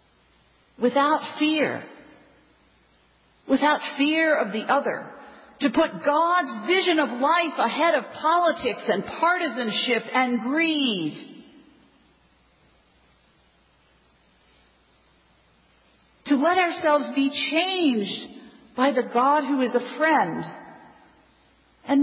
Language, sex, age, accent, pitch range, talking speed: English, female, 40-59, American, 260-315 Hz, 90 wpm